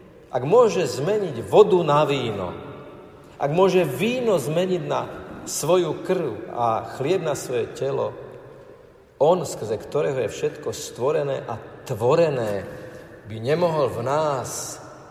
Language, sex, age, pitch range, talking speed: Slovak, male, 50-69, 105-175 Hz, 120 wpm